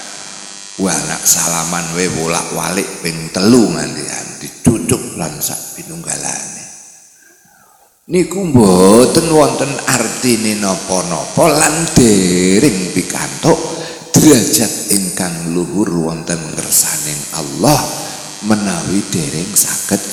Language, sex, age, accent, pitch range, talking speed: Indonesian, male, 60-79, native, 85-110 Hz, 70 wpm